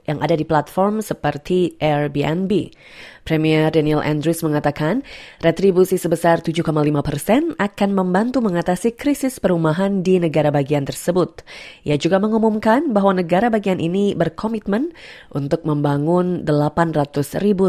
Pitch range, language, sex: 150-195 Hz, Indonesian, female